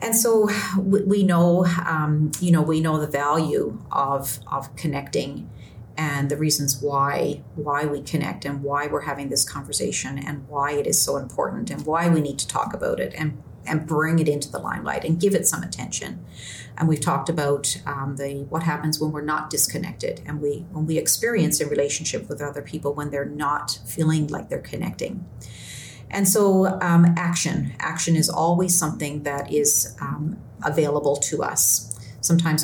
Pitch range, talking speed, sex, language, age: 145-170 Hz, 180 wpm, female, English, 40-59